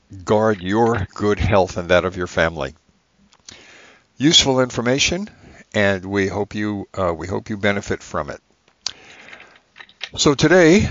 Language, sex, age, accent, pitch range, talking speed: English, male, 60-79, American, 100-125 Hz, 130 wpm